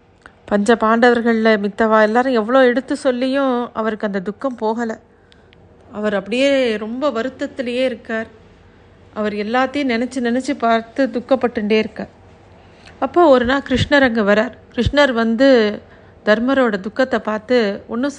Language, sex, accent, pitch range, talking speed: Tamil, female, native, 215-255 Hz, 115 wpm